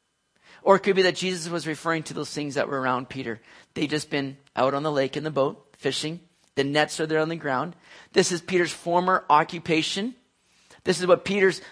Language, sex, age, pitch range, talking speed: English, male, 40-59, 160-195 Hz, 215 wpm